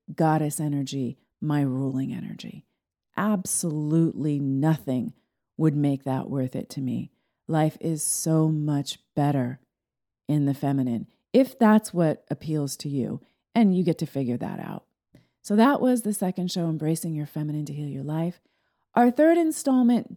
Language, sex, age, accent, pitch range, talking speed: English, female, 40-59, American, 145-200 Hz, 150 wpm